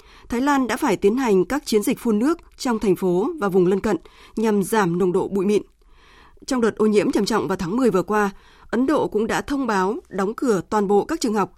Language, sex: Vietnamese, female